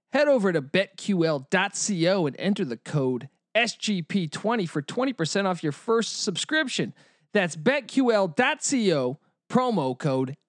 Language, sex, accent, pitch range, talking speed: English, male, American, 160-250 Hz, 110 wpm